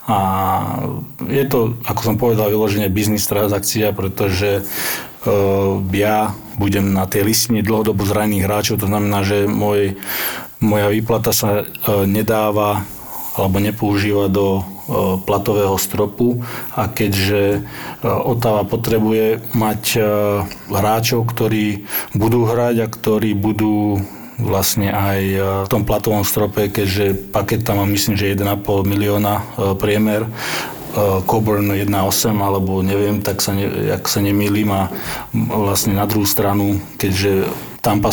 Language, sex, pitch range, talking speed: Slovak, male, 100-110 Hz, 115 wpm